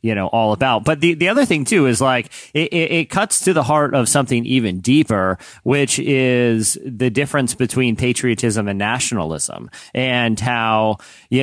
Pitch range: 110-130 Hz